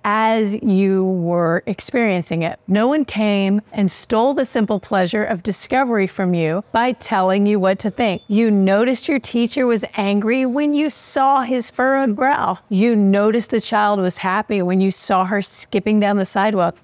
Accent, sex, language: American, female, English